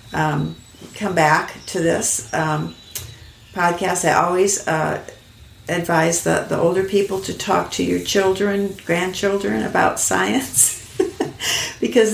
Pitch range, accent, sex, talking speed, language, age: 130-185 Hz, American, female, 120 wpm, English, 50-69